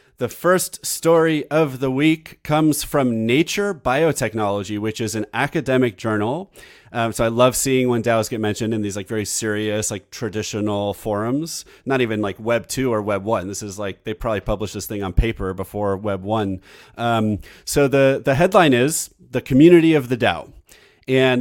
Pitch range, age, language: 110-140 Hz, 30-49, English